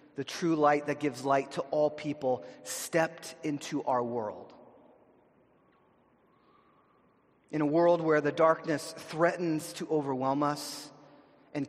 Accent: American